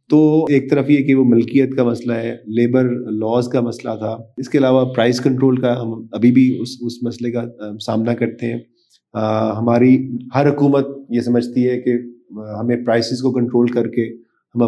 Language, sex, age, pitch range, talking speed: Urdu, male, 40-59, 115-135 Hz, 190 wpm